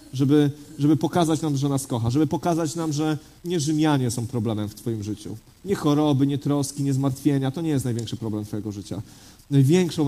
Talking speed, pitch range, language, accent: 190 wpm, 125-155 Hz, Polish, native